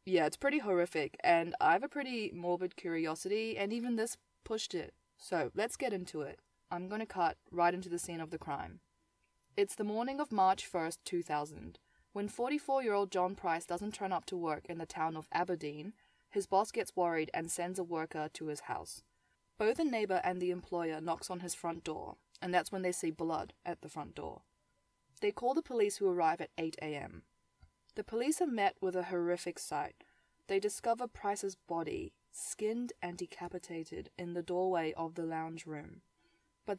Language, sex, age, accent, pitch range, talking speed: English, female, 20-39, Australian, 165-215 Hz, 190 wpm